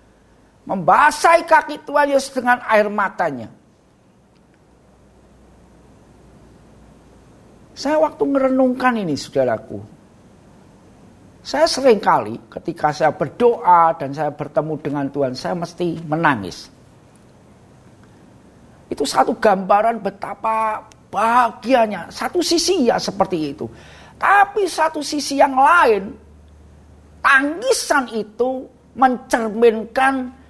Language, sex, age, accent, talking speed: Indonesian, male, 50-69, native, 90 wpm